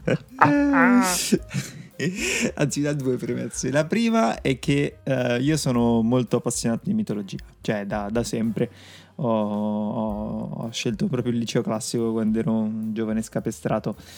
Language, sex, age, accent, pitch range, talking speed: Italian, male, 20-39, native, 110-130 Hz, 135 wpm